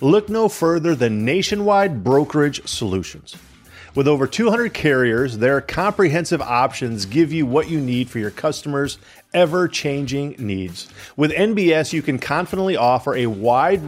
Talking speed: 140 wpm